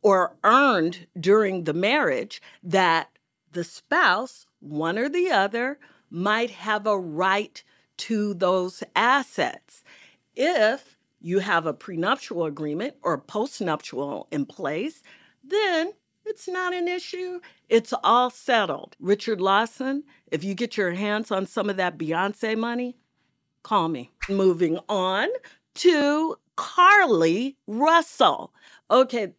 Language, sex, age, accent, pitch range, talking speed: English, female, 50-69, American, 180-255 Hz, 120 wpm